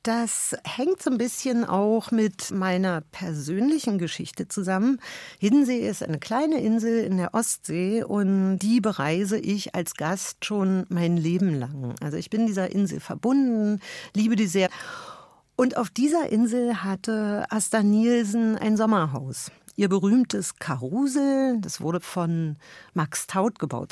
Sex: female